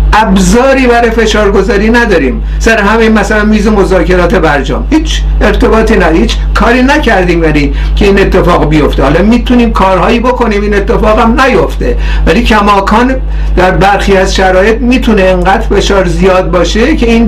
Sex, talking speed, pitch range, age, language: male, 155 wpm, 185-220 Hz, 60-79, Persian